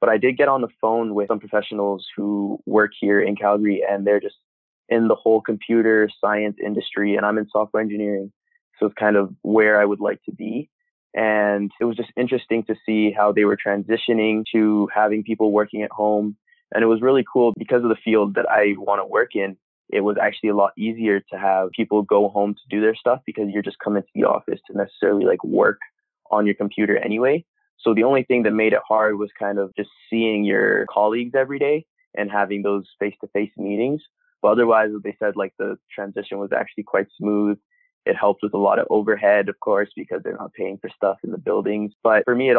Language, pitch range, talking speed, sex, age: English, 100-115 Hz, 220 wpm, male, 20-39